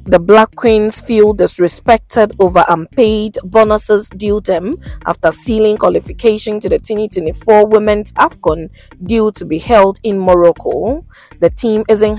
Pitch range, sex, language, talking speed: 185-220 Hz, female, English, 135 wpm